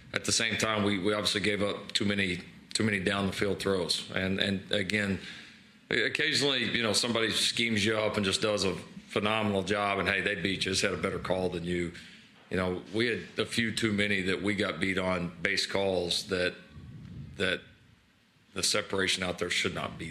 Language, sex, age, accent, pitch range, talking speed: English, male, 40-59, American, 90-105 Hz, 205 wpm